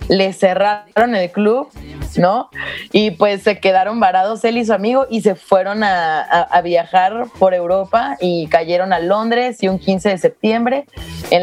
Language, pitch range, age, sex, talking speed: Spanish, 185-235 Hz, 30-49, female, 175 wpm